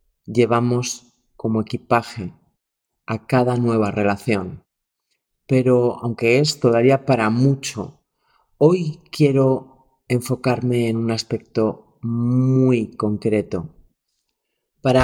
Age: 30-49